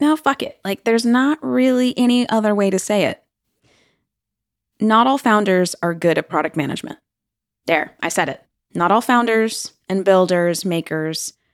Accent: American